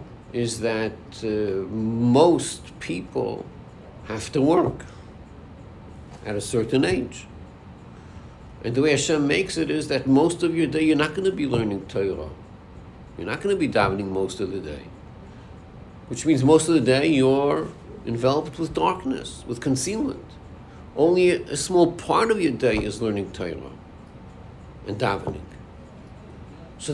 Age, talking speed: 60-79, 145 wpm